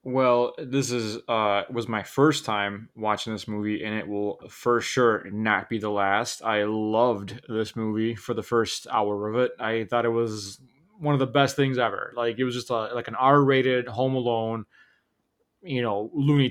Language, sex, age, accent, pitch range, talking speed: English, male, 20-39, American, 110-135 Hz, 195 wpm